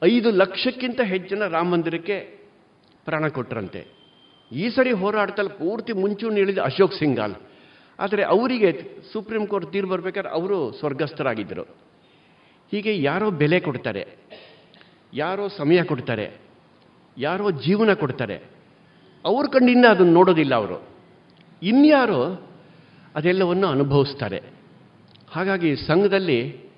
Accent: native